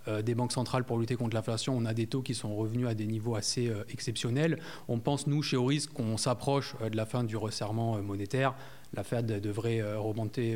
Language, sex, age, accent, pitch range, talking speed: French, male, 30-49, French, 110-135 Hz, 205 wpm